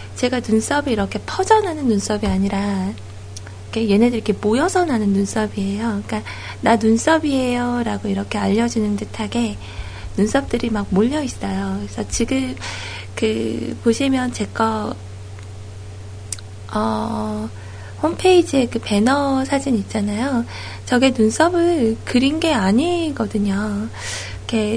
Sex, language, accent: female, Korean, native